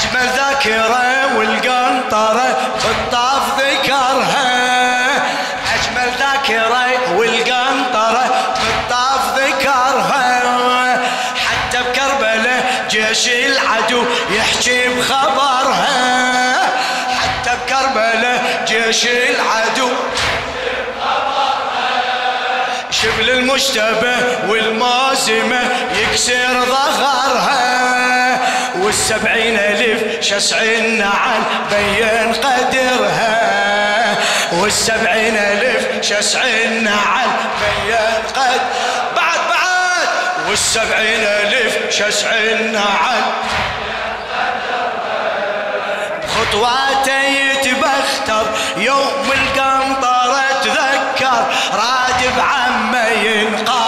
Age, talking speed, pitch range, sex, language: 20-39, 50 wpm, 225-260 Hz, male, Arabic